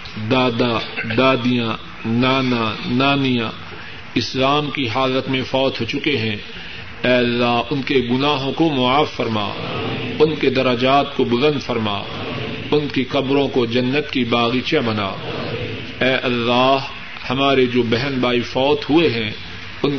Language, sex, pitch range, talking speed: Urdu, male, 115-140 Hz, 130 wpm